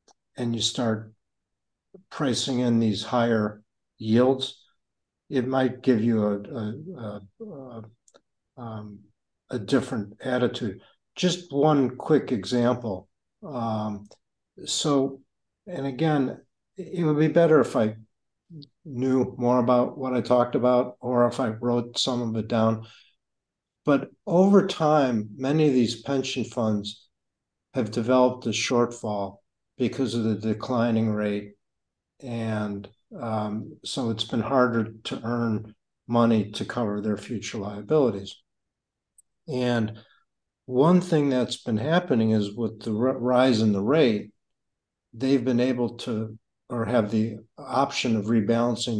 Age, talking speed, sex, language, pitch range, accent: 60-79, 125 wpm, male, English, 110-125 Hz, American